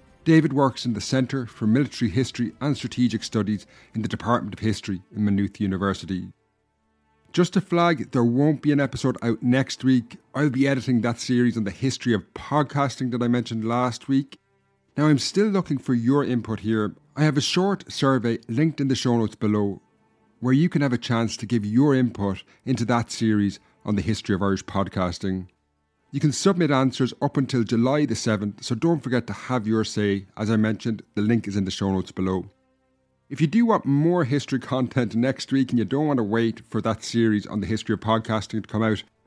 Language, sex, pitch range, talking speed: English, male, 105-135 Hz, 210 wpm